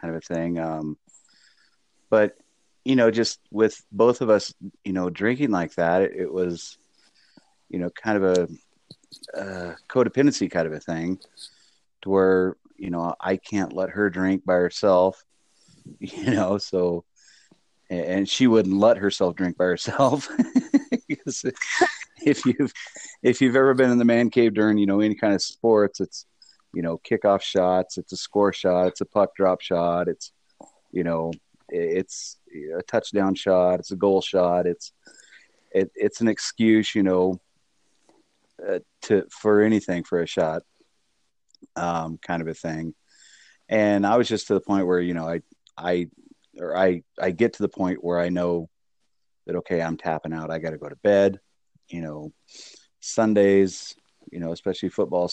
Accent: American